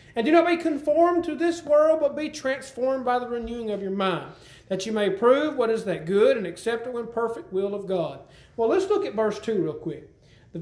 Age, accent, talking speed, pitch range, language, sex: 40-59, American, 230 wpm, 185-260 Hz, English, male